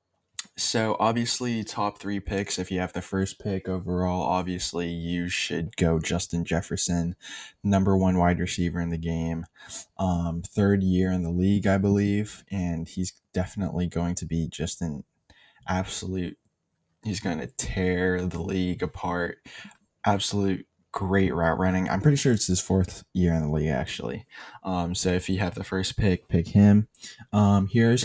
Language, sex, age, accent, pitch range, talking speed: English, male, 10-29, American, 90-100 Hz, 165 wpm